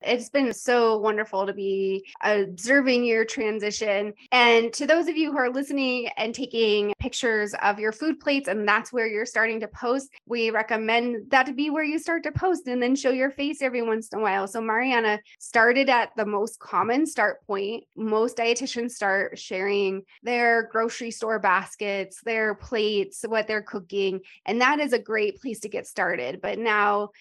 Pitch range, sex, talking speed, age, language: 200-240 Hz, female, 185 wpm, 20-39, English